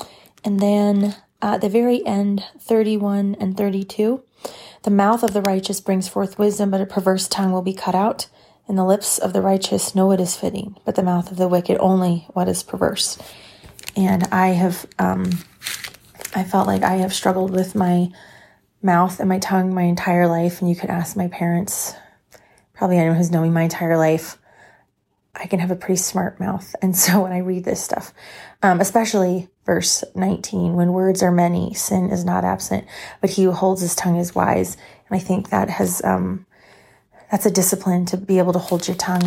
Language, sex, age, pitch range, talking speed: English, female, 30-49, 175-195 Hz, 195 wpm